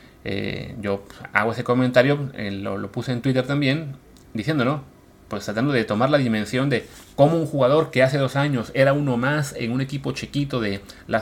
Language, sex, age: Spanish, male, 30-49